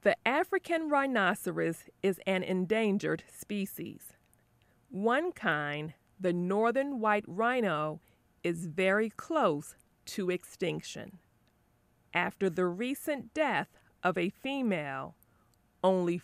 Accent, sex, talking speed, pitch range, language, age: American, female, 95 wpm, 170-245 Hz, English, 40-59